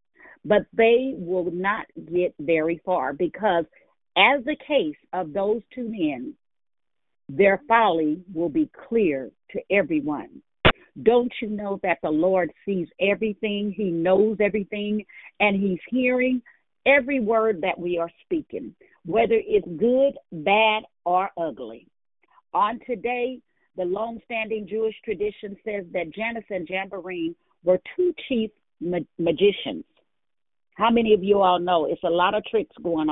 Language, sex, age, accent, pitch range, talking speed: English, female, 50-69, American, 180-250 Hz, 135 wpm